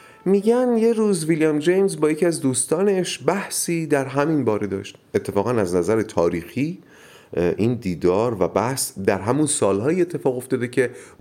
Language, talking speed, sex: Persian, 150 wpm, male